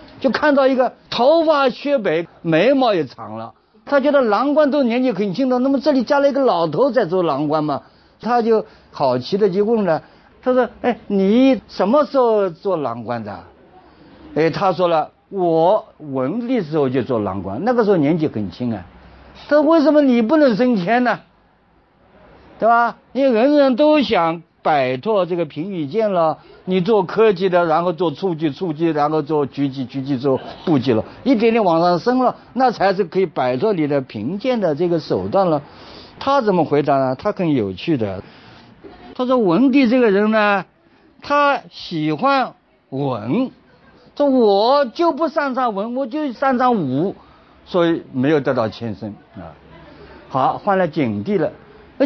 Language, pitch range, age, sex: Chinese, 160-260 Hz, 50-69, male